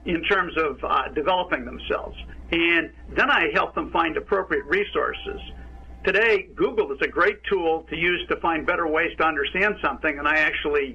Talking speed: 175 wpm